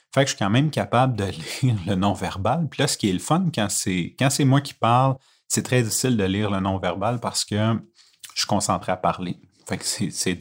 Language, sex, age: French, male, 30-49